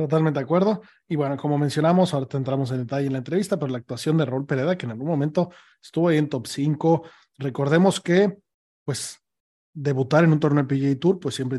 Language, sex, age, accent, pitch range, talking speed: Spanish, male, 30-49, Mexican, 135-170 Hz, 210 wpm